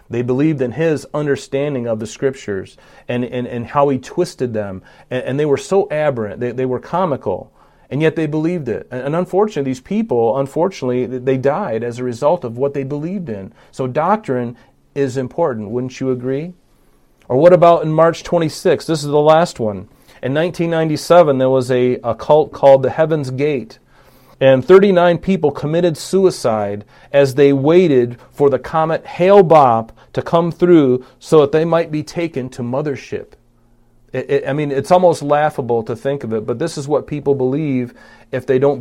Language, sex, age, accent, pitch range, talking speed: English, male, 40-59, American, 120-150 Hz, 180 wpm